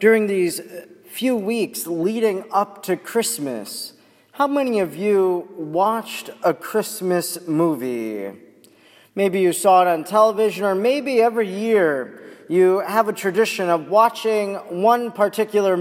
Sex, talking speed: male, 130 wpm